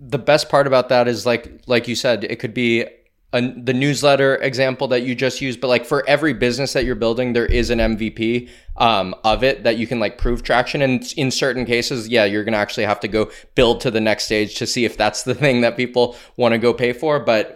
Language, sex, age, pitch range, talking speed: English, male, 20-39, 110-130 Hz, 250 wpm